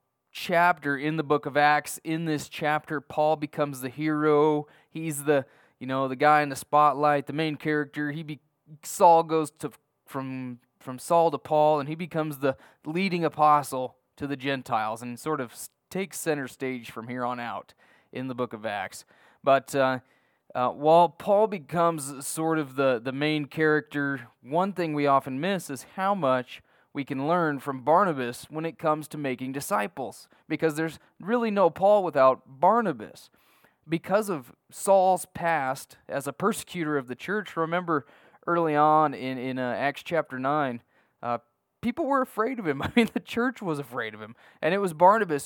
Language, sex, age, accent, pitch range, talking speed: English, male, 20-39, American, 135-170 Hz, 175 wpm